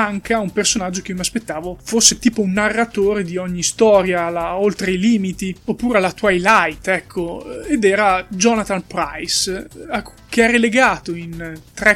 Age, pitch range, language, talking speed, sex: 20-39, 180-230 Hz, Italian, 150 wpm, male